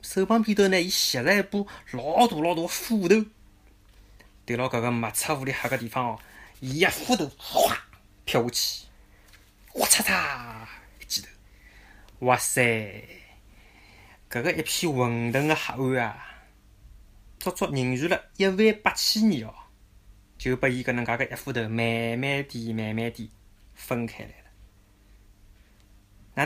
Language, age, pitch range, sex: Chinese, 20-39, 100-150 Hz, male